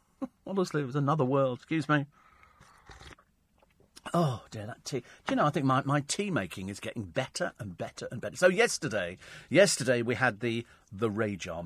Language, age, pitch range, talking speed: English, 40-59, 105-150 Hz, 175 wpm